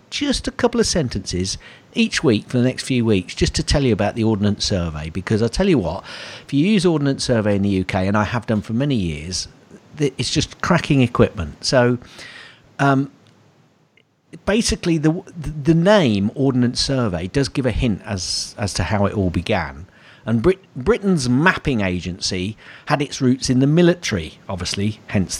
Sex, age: male, 50-69